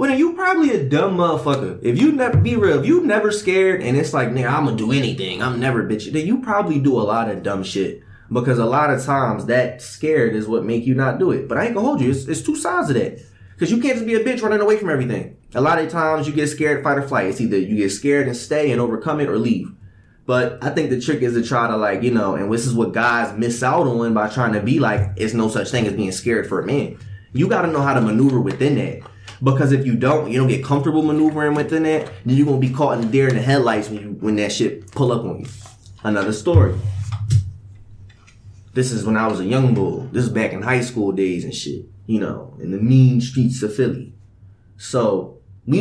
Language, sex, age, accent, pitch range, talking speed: English, male, 20-39, American, 110-150 Hz, 260 wpm